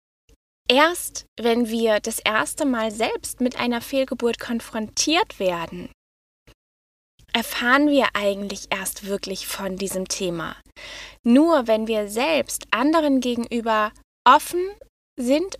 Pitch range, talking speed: 205-260 Hz, 110 wpm